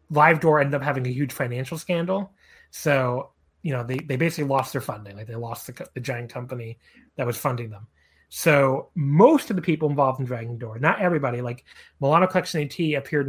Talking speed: 205 wpm